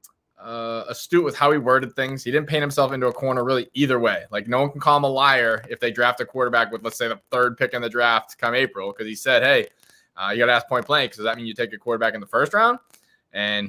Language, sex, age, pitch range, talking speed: English, male, 20-39, 115-145 Hz, 275 wpm